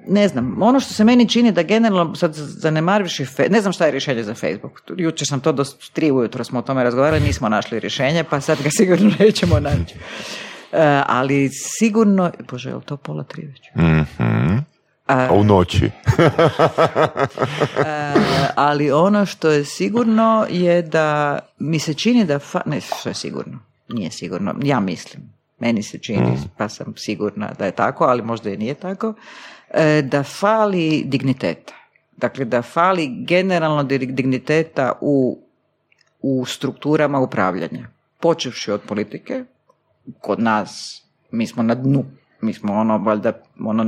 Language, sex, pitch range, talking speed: Croatian, female, 130-185 Hz, 150 wpm